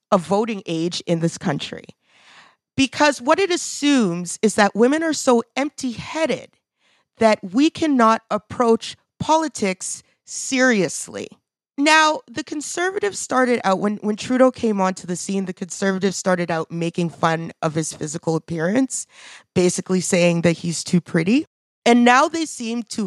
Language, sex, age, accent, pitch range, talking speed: English, female, 30-49, American, 175-235 Hz, 145 wpm